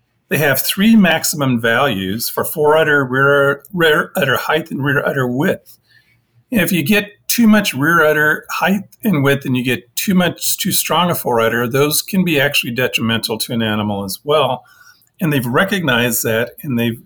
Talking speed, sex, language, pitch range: 180 wpm, male, English, 120-155 Hz